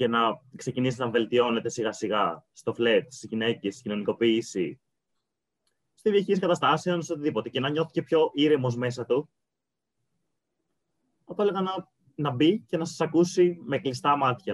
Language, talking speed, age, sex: Greek, 155 wpm, 20-39, male